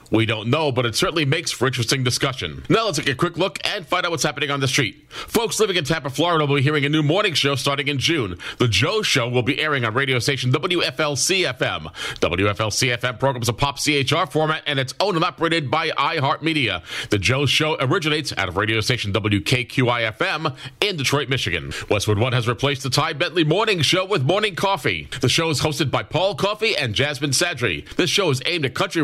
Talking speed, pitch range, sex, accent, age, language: 210 wpm, 120-155 Hz, male, American, 40-59, English